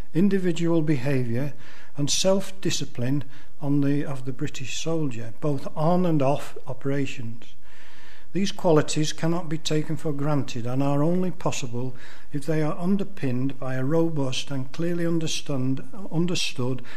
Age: 60-79